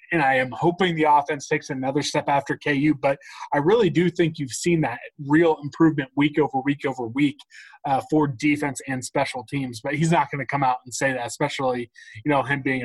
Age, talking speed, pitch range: 20-39, 220 wpm, 140-165 Hz